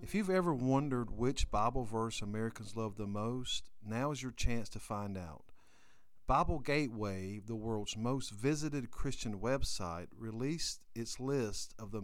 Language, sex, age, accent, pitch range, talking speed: English, male, 50-69, American, 105-140 Hz, 155 wpm